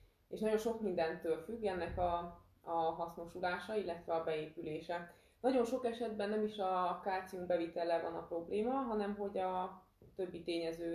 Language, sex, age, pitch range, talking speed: Hungarian, female, 20-39, 165-190 Hz, 155 wpm